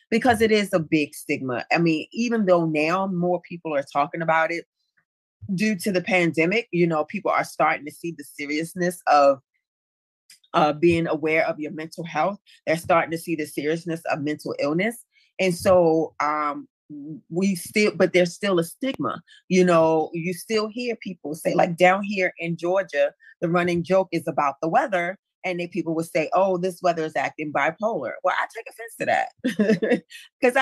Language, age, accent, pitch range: English, 30-49, American, 155-200 Hz